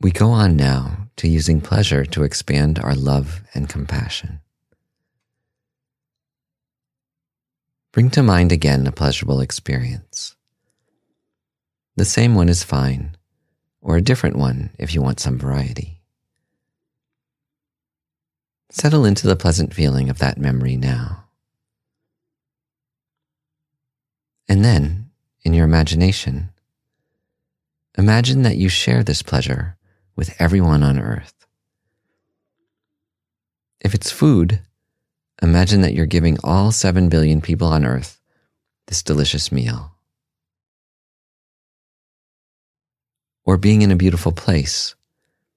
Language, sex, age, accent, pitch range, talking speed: English, male, 40-59, American, 75-115 Hz, 105 wpm